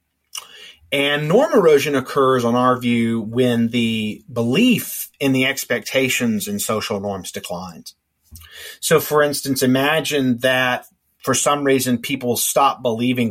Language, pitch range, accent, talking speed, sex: English, 100-135 Hz, American, 125 wpm, male